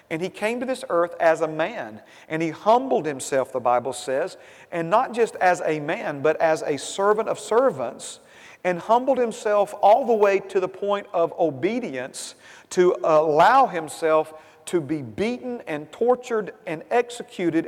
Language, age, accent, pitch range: English, 40-59, American, 160-245 Hz